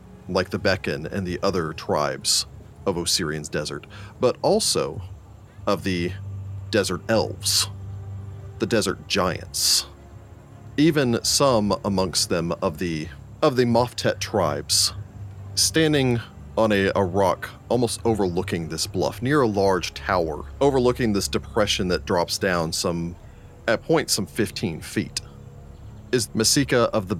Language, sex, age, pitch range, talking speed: English, male, 40-59, 90-115 Hz, 130 wpm